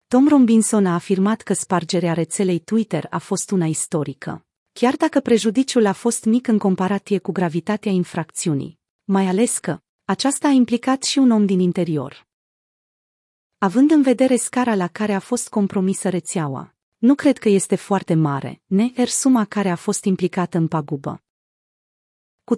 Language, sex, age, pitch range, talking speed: Romanian, female, 30-49, 175-240 Hz, 160 wpm